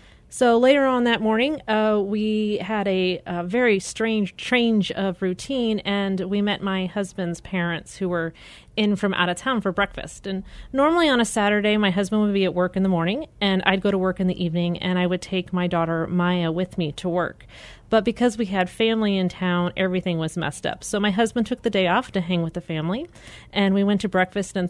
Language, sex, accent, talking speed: English, female, American, 225 wpm